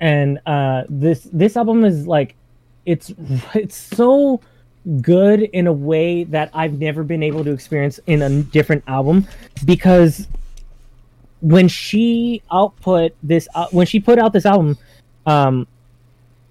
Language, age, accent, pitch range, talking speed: English, 20-39, American, 125-170 Hz, 135 wpm